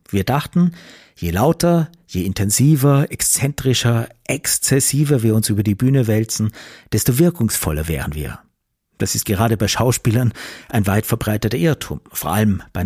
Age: 50-69